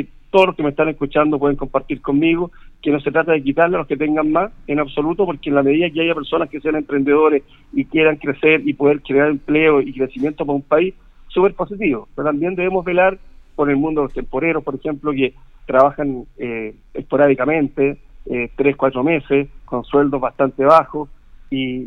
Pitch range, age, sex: 135-165 Hz, 50-69, male